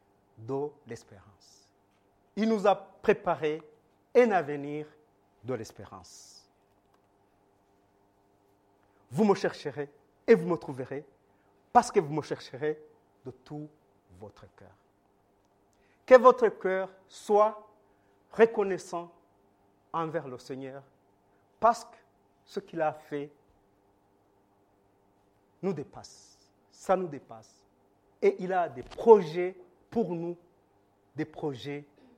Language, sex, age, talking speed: French, male, 50-69, 100 wpm